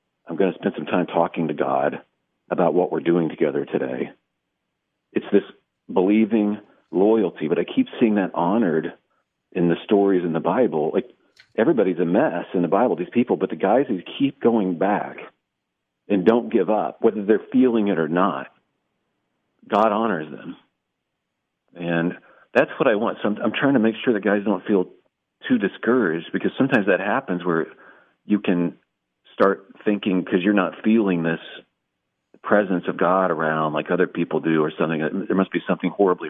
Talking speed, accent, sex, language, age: 175 wpm, American, male, English, 50-69